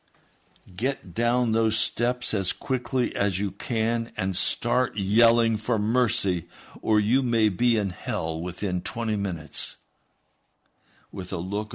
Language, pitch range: English, 95-115 Hz